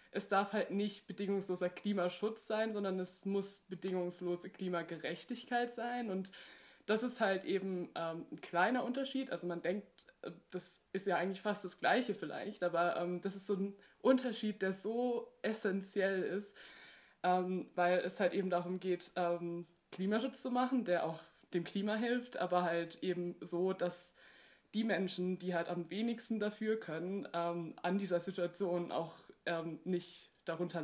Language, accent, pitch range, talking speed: German, German, 175-215 Hz, 155 wpm